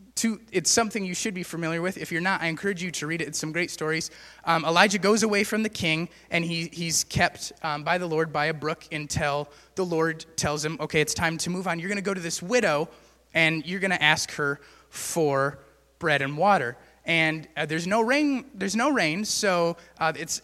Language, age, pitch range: English, 20-39, 150-185 Hz